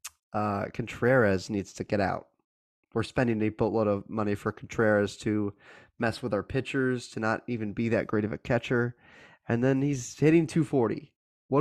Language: English